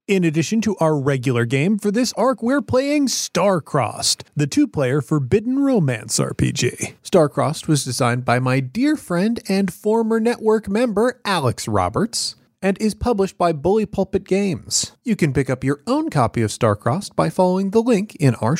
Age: 30-49